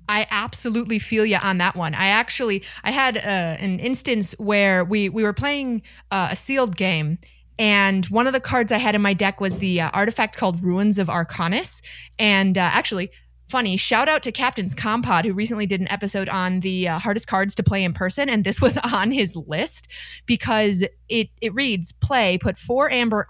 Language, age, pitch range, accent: English, 30-49, 185-235 Hz, American